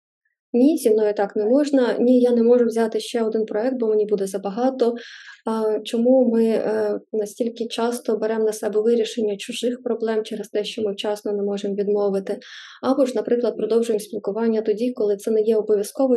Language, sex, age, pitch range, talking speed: Ukrainian, female, 20-39, 215-245 Hz, 175 wpm